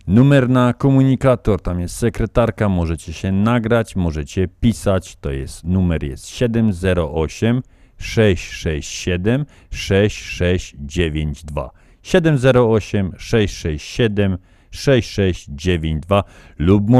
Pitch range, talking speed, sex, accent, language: 90-120 Hz, 65 wpm, male, native, Polish